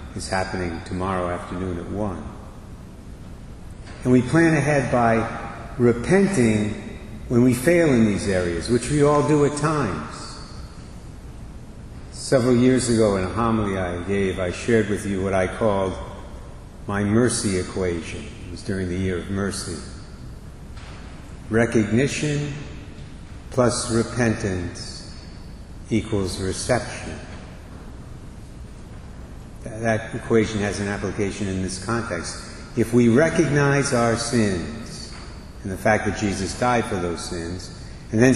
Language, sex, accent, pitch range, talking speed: English, male, American, 95-125 Hz, 120 wpm